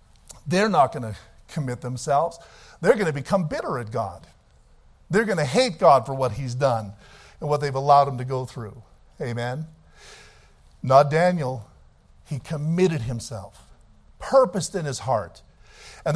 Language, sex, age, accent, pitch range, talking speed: English, male, 50-69, American, 125-195 Hz, 150 wpm